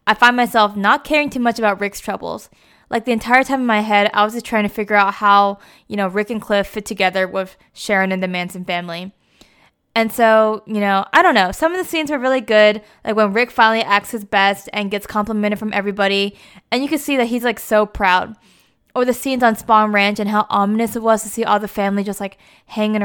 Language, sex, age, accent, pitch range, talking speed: English, female, 20-39, American, 200-235 Hz, 240 wpm